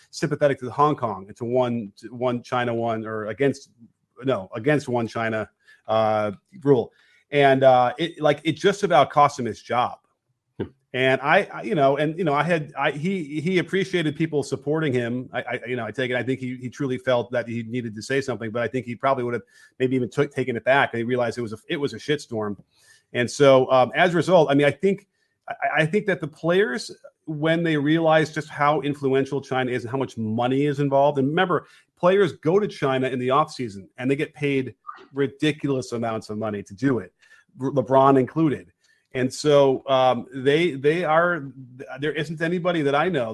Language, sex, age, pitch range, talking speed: English, male, 30-49, 120-150 Hz, 215 wpm